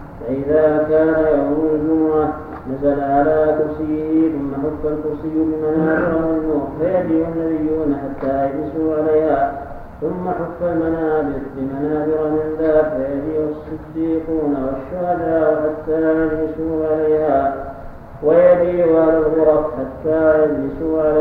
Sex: male